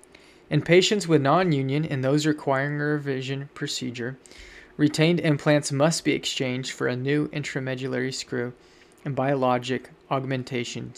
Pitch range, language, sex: 135-160 Hz, English, male